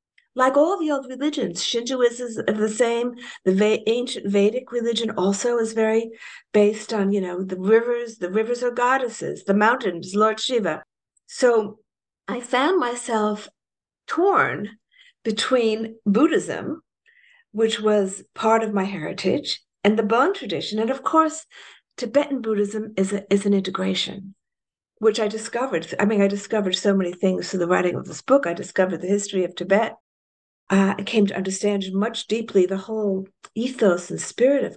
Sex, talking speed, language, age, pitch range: female, 160 wpm, English, 60-79, 195-255 Hz